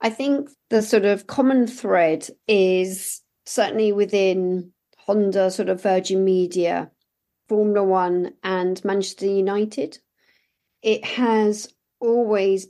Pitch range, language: 185-215 Hz, English